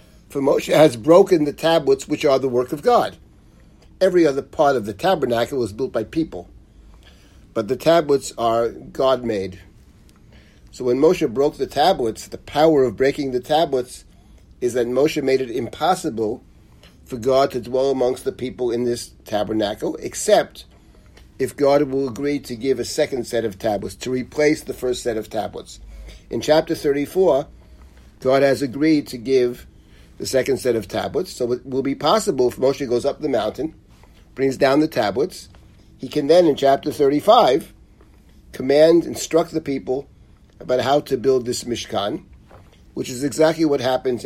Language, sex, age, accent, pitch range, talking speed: English, male, 50-69, American, 120-150 Hz, 165 wpm